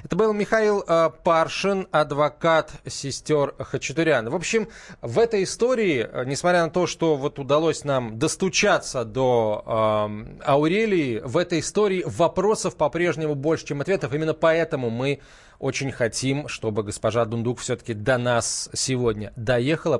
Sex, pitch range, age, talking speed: male, 120-165 Hz, 20-39, 130 wpm